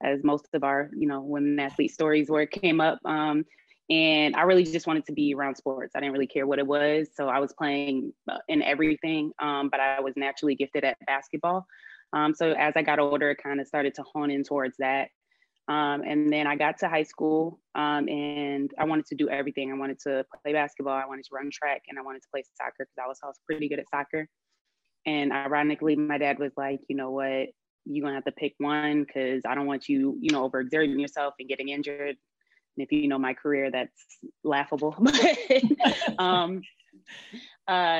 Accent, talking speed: American, 215 wpm